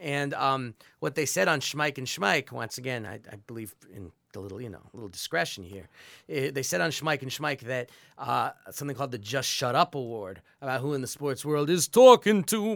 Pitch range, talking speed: 120-155 Hz, 220 wpm